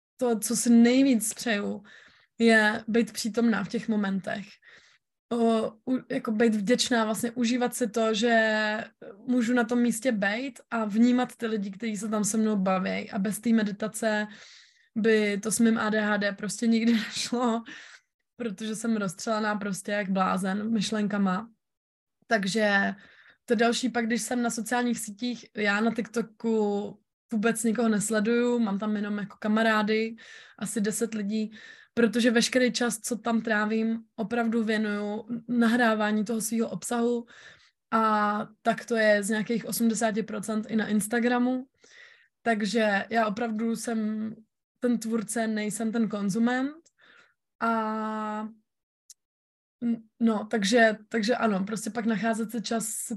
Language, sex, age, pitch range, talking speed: Slovak, female, 20-39, 215-235 Hz, 130 wpm